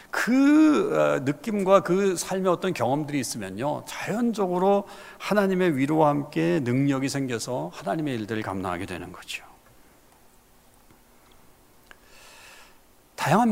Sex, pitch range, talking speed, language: male, 115-185 Hz, 85 wpm, English